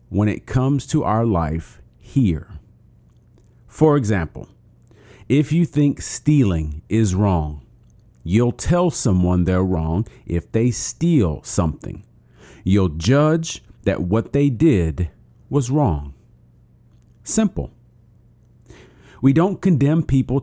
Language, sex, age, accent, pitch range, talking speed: English, male, 40-59, American, 90-125 Hz, 110 wpm